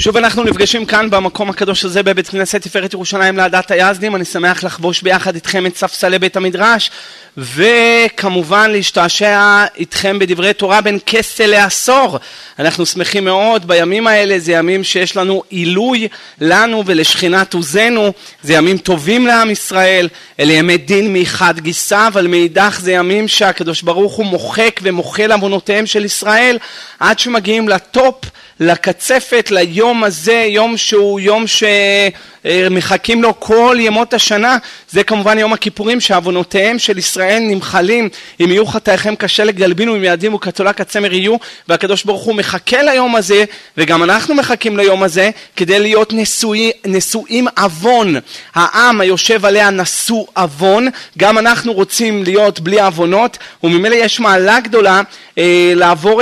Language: Hebrew